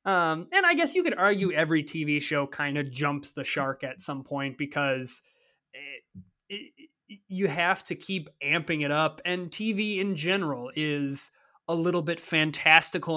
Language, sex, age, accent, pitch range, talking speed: English, male, 30-49, American, 160-225 Hz, 160 wpm